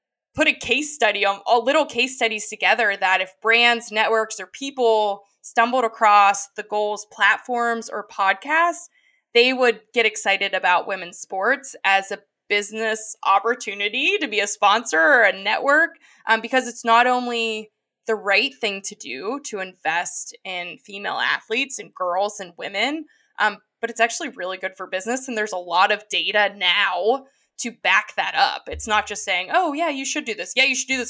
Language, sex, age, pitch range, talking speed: English, female, 20-39, 200-245 Hz, 180 wpm